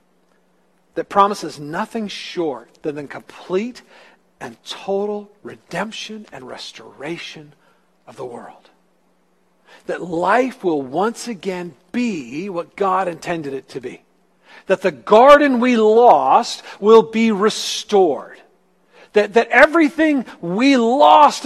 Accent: American